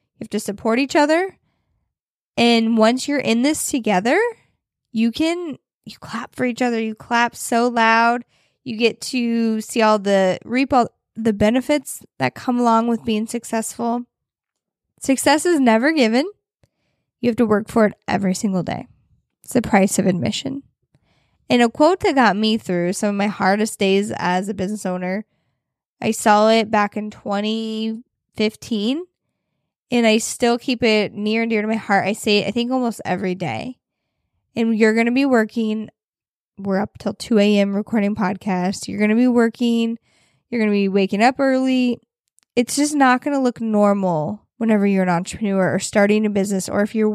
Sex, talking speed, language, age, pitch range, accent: female, 180 wpm, English, 10-29, 205-240 Hz, American